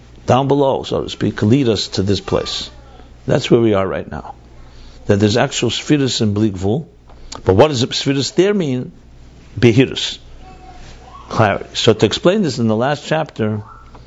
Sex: male